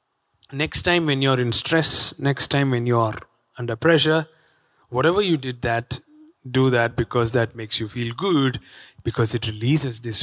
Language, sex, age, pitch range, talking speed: English, male, 30-49, 120-155 Hz, 170 wpm